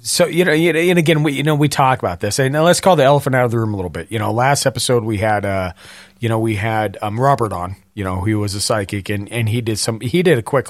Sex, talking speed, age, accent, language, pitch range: male, 305 wpm, 40-59, American, English, 110-140 Hz